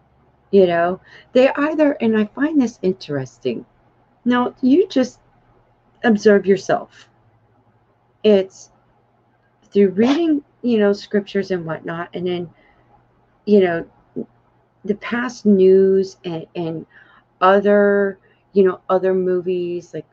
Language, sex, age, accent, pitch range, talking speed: English, female, 40-59, American, 150-220 Hz, 110 wpm